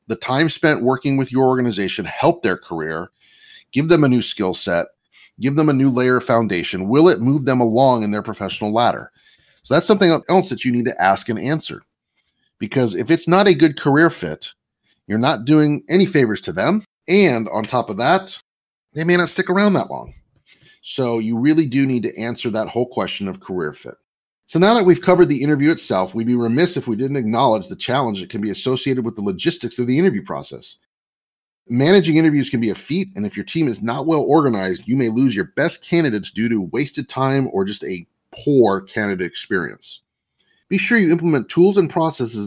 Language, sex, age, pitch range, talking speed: English, male, 40-59, 120-165 Hz, 210 wpm